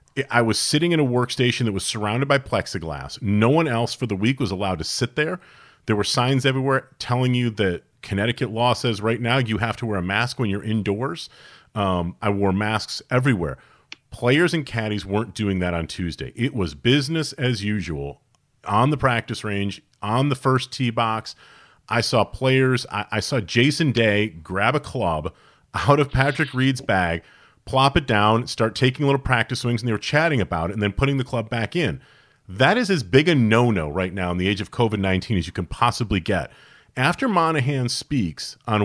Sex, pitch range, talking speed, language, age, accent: male, 105-135 Hz, 200 wpm, English, 40-59, American